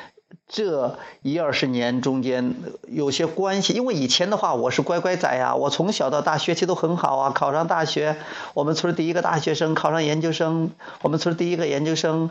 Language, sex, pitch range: Chinese, male, 135-170 Hz